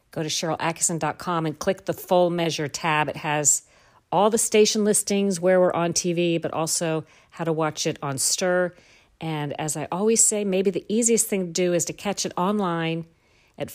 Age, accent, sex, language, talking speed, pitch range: 50-69, American, female, English, 190 wpm, 155-185 Hz